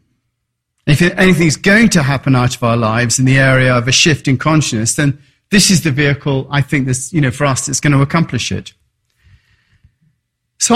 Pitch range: 120-170 Hz